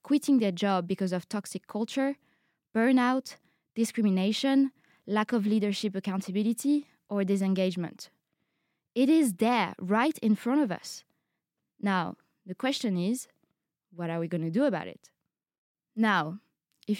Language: English